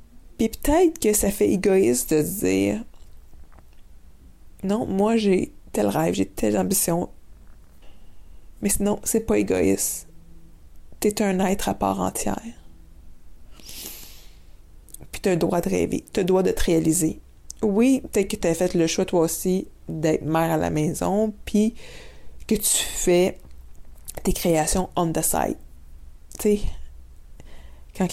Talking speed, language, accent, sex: 145 wpm, French, Canadian, female